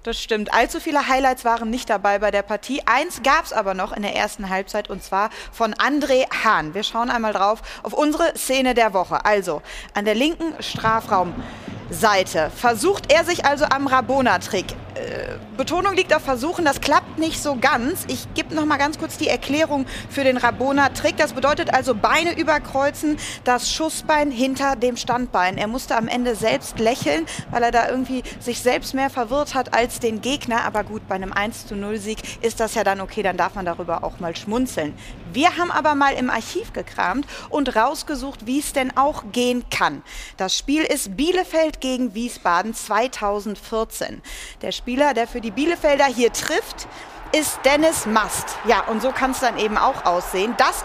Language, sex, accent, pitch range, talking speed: German, female, German, 215-290 Hz, 185 wpm